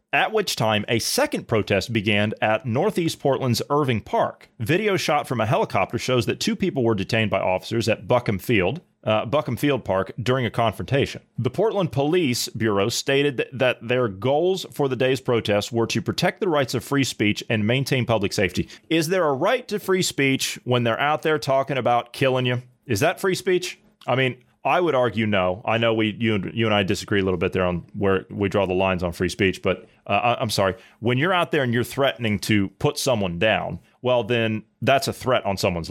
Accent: American